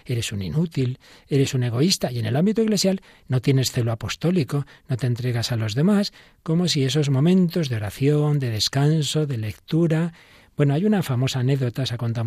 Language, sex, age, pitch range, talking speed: Spanish, male, 40-59, 120-165 Hz, 190 wpm